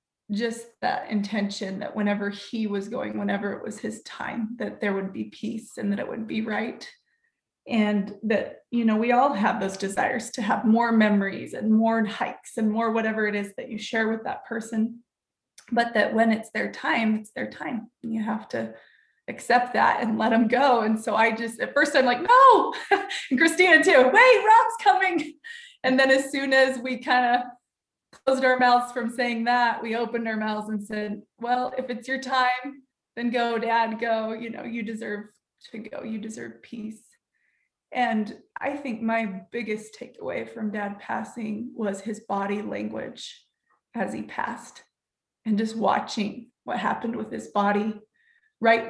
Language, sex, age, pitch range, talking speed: English, female, 20-39, 215-250 Hz, 180 wpm